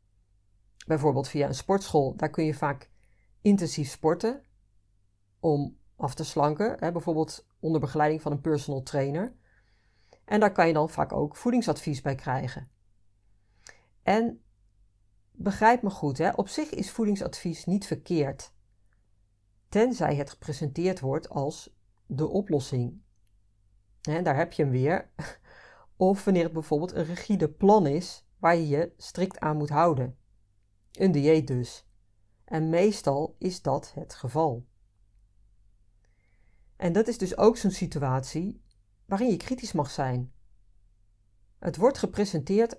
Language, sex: Dutch, female